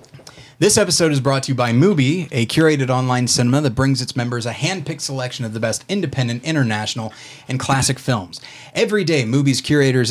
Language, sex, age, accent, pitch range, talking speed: English, male, 30-49, American, 120-145 Hz, 185 wpm